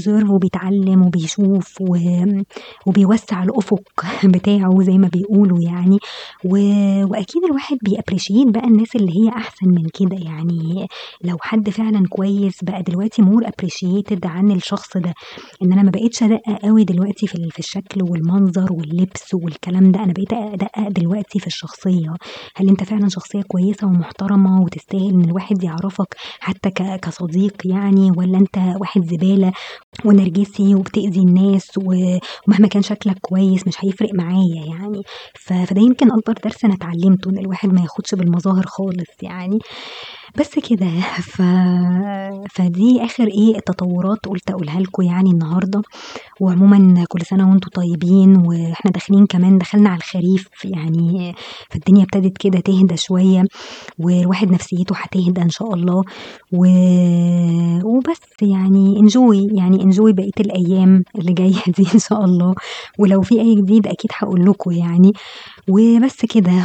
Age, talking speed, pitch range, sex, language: 20-39, 135 wpm, 180-205 Hz, male, Arabic